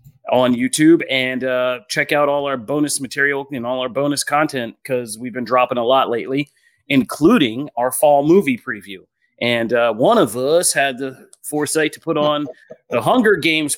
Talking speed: 180 wpm